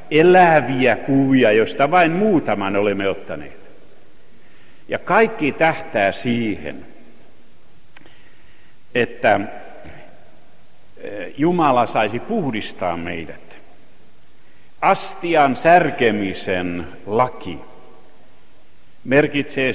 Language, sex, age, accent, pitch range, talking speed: Finnish, male, 60-79, native, 100-145 Hz, 60 wpm